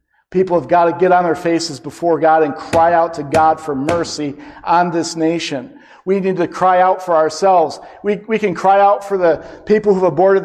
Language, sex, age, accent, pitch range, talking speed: English, male, 50-69, American, 180-225 Hz, 220 wpm